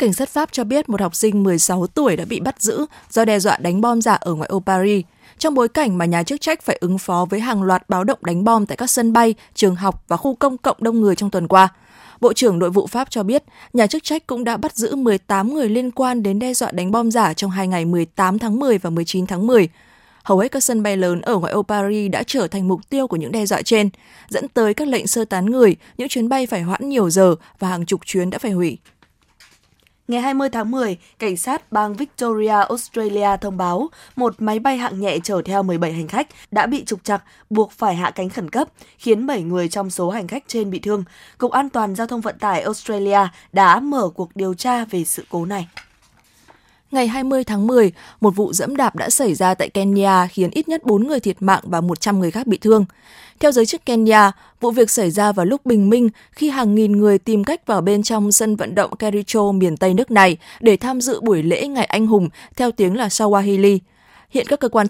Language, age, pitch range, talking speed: Vietnamese, 20-39, 190-240 Hz, 240 wpm